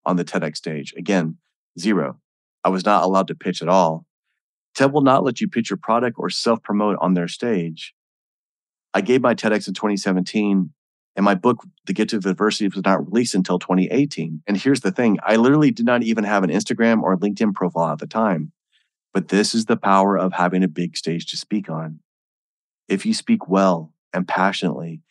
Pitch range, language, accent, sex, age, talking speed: 90-110 Hz, English, American, male, 30-49, 195 wpm